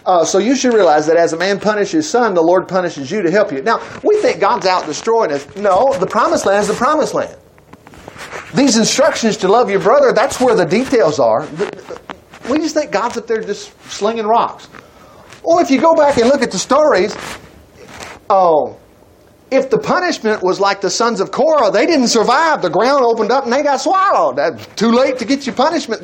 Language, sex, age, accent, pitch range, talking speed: English, male, 40-59, American, 185-265 Hz, 210 wpm